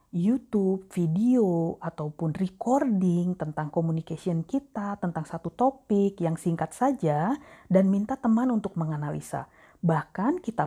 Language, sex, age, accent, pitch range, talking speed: Indonesian, female, 40-59, native, 160-230 Hz, 110 wpm